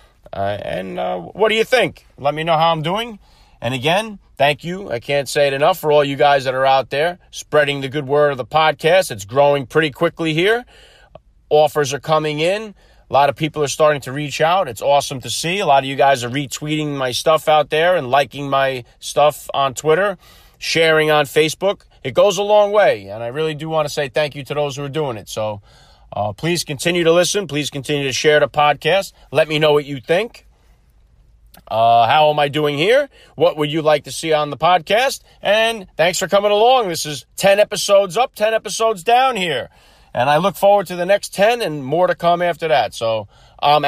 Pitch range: 140-175 Hz